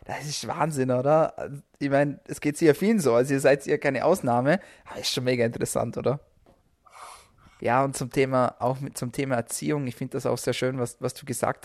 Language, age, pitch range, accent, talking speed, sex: German, 20-39, 125-145 Hz, German, 220 wpm, male